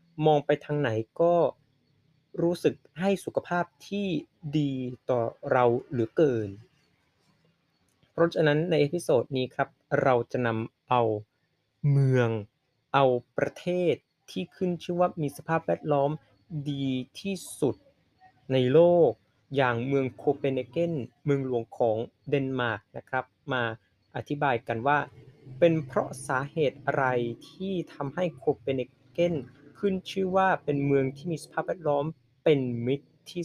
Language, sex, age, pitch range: Thai, male, 30-49, 130-170 Hz